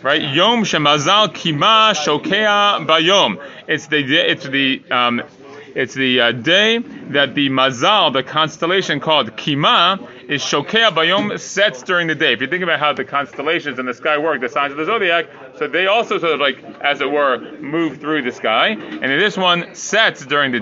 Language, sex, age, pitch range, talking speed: English, male, 30-49, 145-205 Hz, 190 wpm